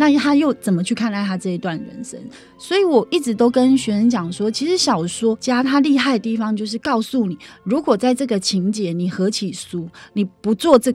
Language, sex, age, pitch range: Chinese, female, 30-49, 190-275 Hz